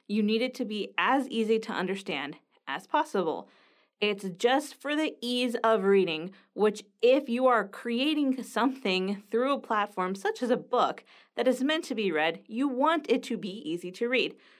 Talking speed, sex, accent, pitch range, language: 185 wpm, female, American, 205-255 Hz, English